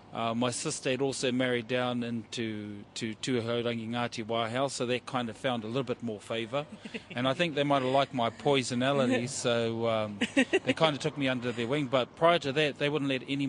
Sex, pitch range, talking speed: male, 115-135 Hz, 225 wpm